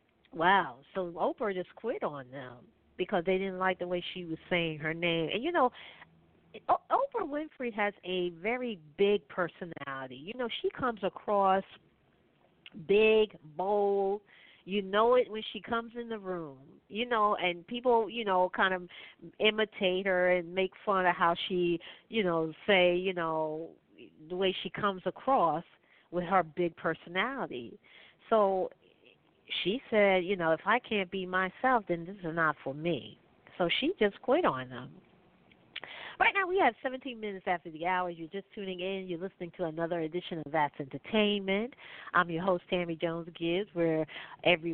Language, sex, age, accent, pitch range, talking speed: English, female, 40-59, American, 165-210 Hz, 170 wpm